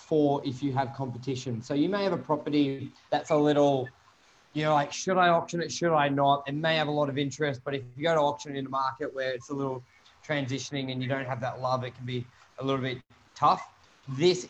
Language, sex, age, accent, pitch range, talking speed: English, male, 20-39, Australian, 135-155 Hz, 245 wpm